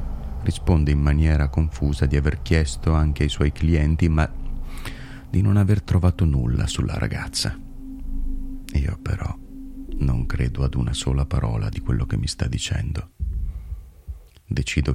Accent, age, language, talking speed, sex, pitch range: native, 30-49, Italian, 135 wpm, male, 70-80 Hz